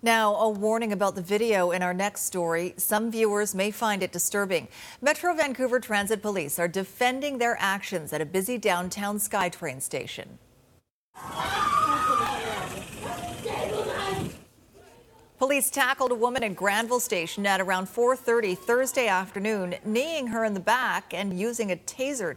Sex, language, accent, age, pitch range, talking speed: female, English, American, 40-59, 180-235 Hz, 135 wpm